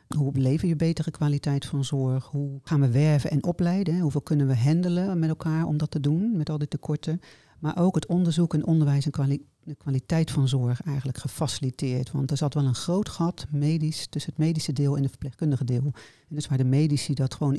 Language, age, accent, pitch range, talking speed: Dutch, 40-59, Dutch, 135-160 Hz, 220 wpm